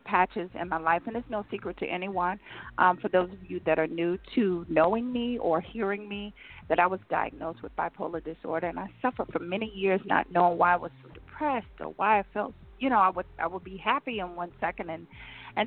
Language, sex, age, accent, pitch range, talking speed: English, female, 50-69, American, 175-250 Hz, 230 wpm